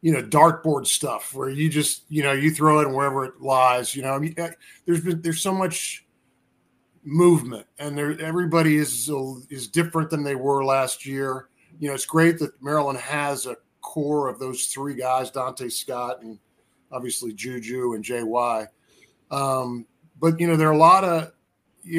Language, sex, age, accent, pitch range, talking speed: English, male, 40-59, American, 130-160 Hz, 185 wpm